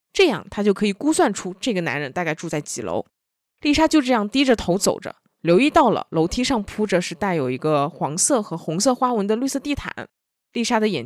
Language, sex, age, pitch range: Chinese, female, 20-39, 165-235 Hz